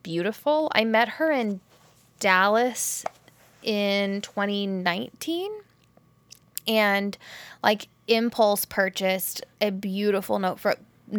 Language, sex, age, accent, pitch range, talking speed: English, female, 10-29, American, 180-220 Hz, 85 wpm